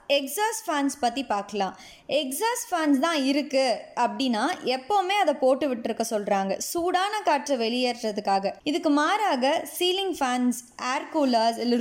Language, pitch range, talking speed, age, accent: Tamil, 235-320 Hz, 120 wpm, 20-39, native